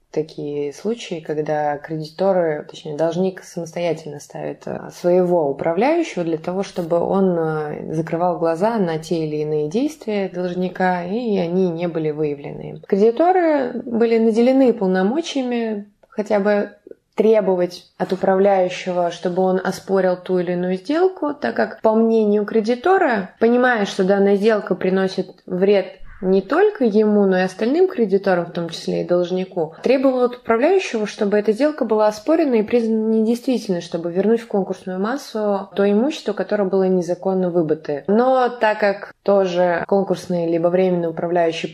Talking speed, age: 140 wpm, 20-39